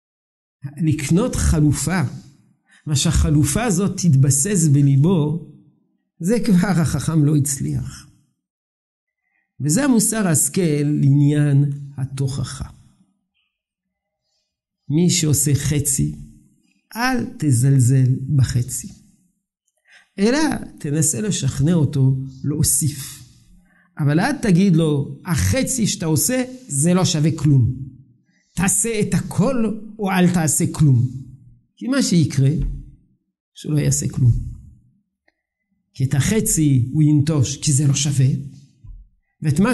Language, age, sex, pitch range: Hebrew, 50-69, male, 140-195 Hz